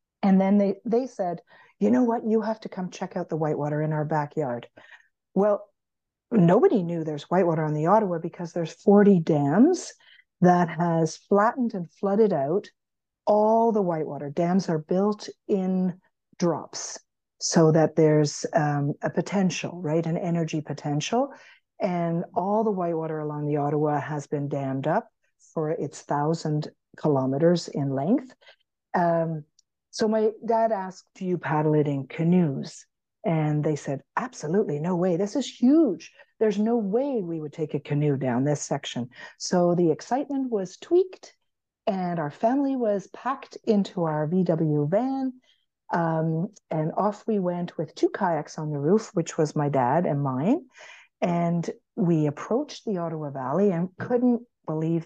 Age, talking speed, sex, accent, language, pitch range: 50-69, 155 wpm, female, American, English, 155-215 Hz